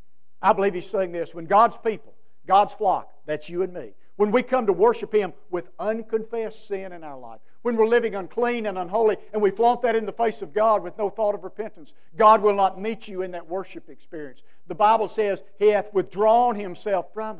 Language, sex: English, male